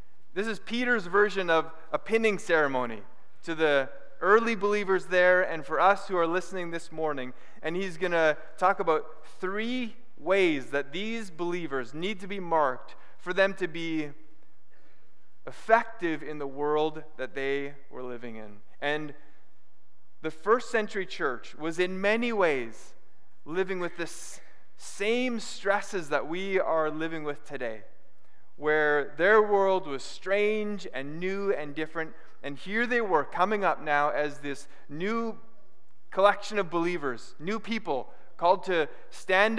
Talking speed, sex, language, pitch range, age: 145 wpm, male, English, 145-195 Hz, 20-39